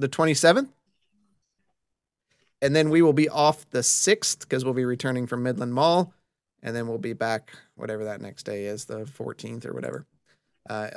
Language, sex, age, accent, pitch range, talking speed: English, male, 30-49, American, 125-155 Hz, 175 wpm